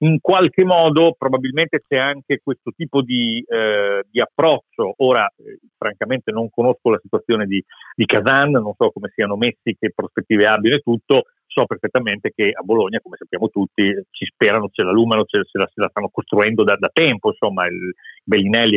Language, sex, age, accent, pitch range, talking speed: Italian, male, 40-59, native, 110-140 Hz, 185 wpm